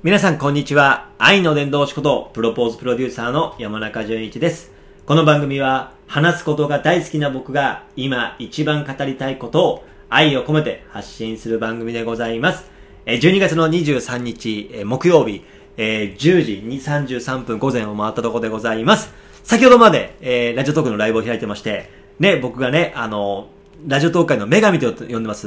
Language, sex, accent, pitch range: Japanese, male, native, 125-185 Hz